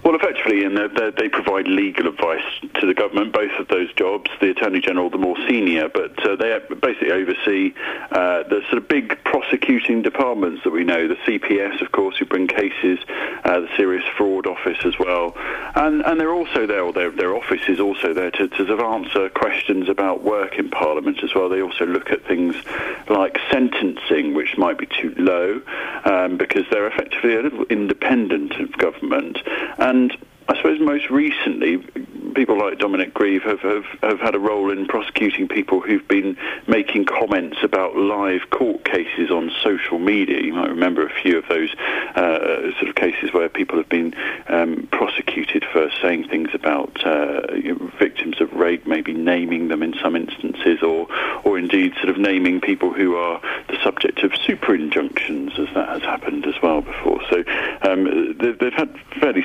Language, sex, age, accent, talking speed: English, male, 40-59, British, 185 wpm